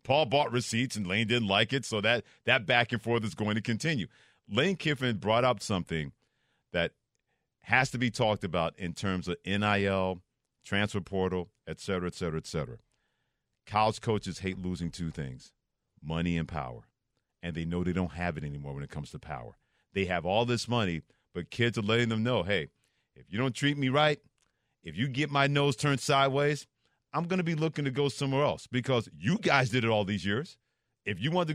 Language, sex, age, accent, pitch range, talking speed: English, male, 40-59, American, 105-145 Hz, 205 wpm